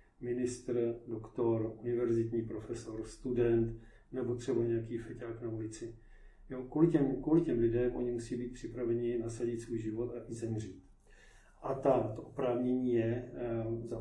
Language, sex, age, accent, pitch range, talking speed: Czech, male, 40-59, native, 110-120 Hz, 130 wpm